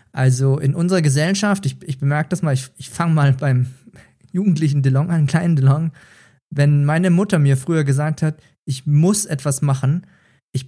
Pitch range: 135-170 Hz